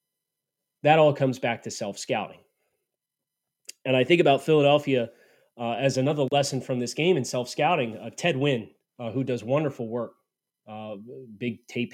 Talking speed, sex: 145 wpm, male